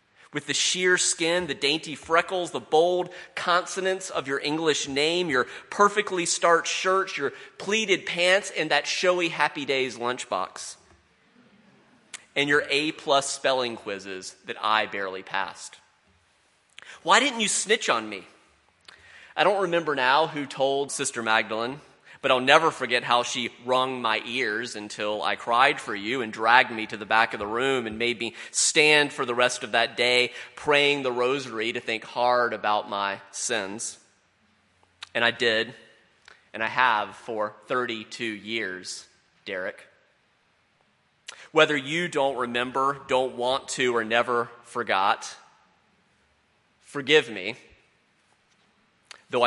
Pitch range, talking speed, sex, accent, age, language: 115-160 Hz, 140 wpm, male, American, 30-49, English